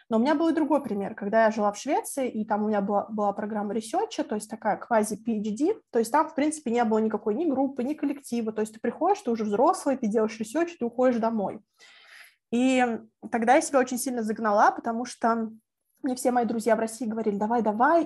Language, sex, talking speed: Russian, female, 220 wpm